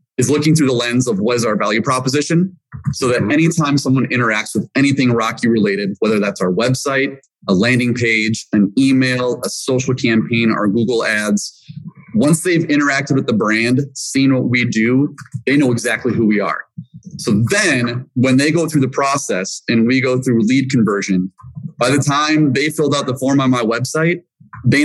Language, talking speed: English, 185 wpm